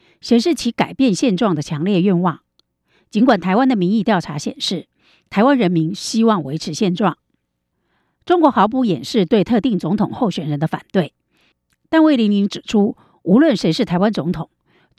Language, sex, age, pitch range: Chinese, female, 50-69, 170-240 Hz